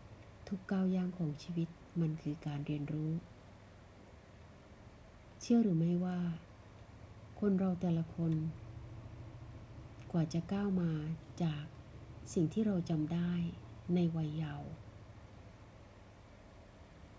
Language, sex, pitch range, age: Thai, female, 110-175 Hz, 30-49